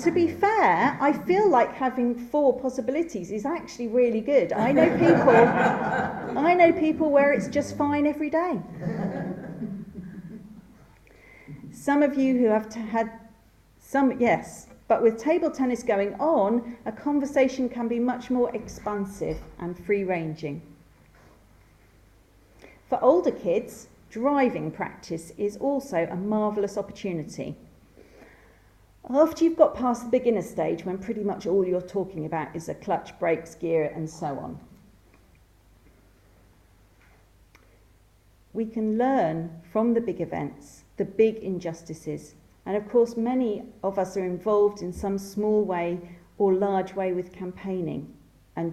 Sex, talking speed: female, 135 wpm